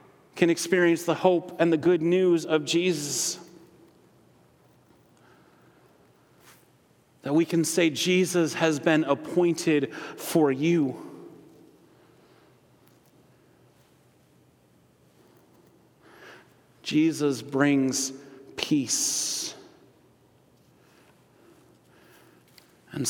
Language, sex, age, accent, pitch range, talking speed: English, male, 40-59, American, 150-185 Hz, 60 wpm